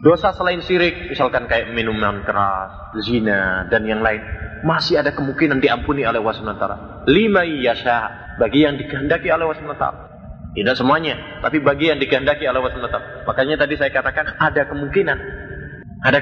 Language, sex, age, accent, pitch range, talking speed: Indonesian, male, 30-49, native, 110-160 Hz, 145 wpm